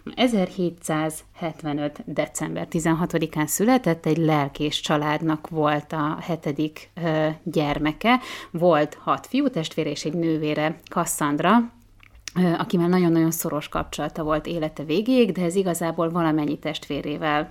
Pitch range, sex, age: 155-180 Hz, female, 30-49